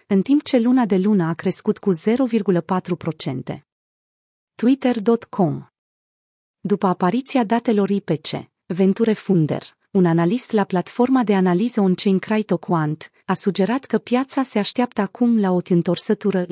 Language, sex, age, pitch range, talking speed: Romanian, female, 30-49, 175-230 Hz, 130 wpm